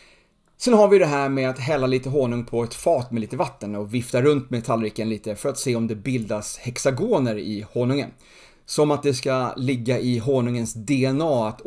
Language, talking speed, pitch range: Swedish, 205 wpm, 115-145 Hz